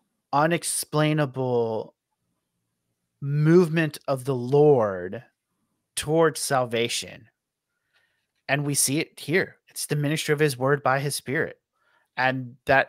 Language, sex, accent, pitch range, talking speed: English, male, American, 135-160 Hz, 105 wpm